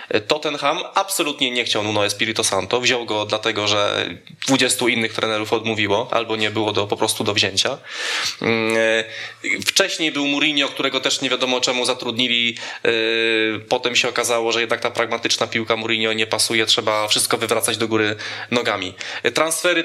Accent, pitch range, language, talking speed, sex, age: native, 115-145 Hz, Polish, 150 wpm, male, 20-39